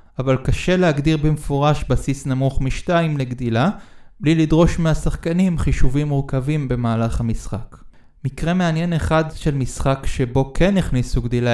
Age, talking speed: 20-39, 125 wpm